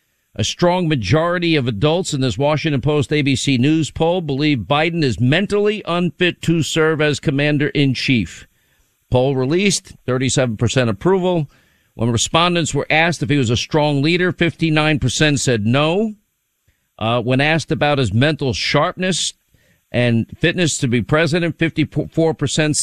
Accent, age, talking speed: American, 50-69, 130 wpm